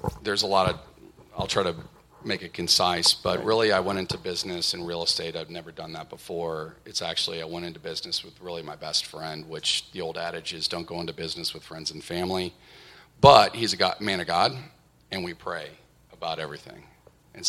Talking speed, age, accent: 205 wpm, 40-59, American